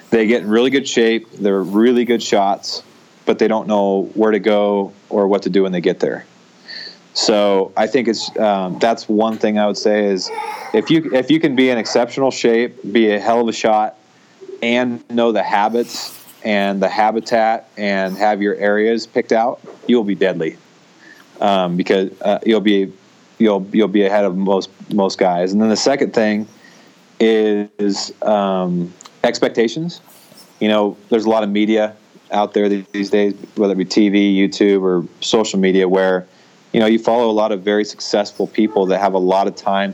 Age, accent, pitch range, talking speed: 30-49, American, 95-115 Hz, 190 wpm